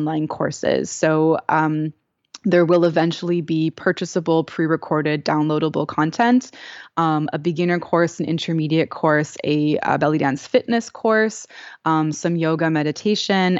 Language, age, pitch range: English, 20-39, 160-180 Hz